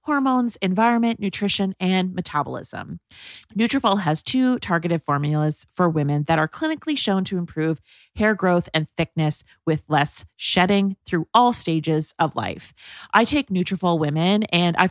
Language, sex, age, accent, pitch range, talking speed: English, female, 30-49, American, 155-205 Hz, 145 wpm